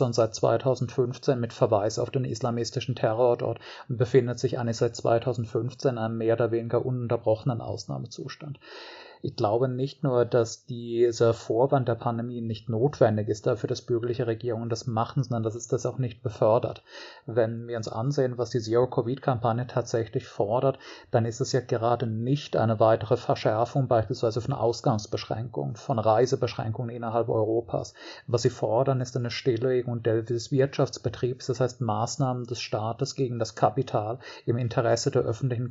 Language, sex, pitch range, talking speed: German, male, 115-130 Hz, 155 wpm